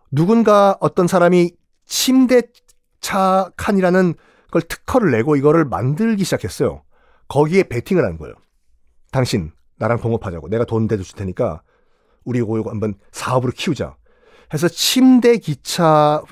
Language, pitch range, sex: Korean, 115-180 Hz, male